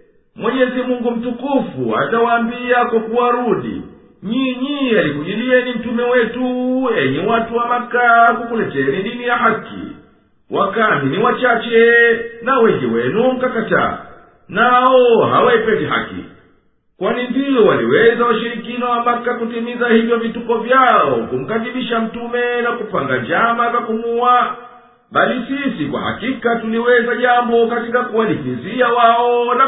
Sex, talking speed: male, 110 wpm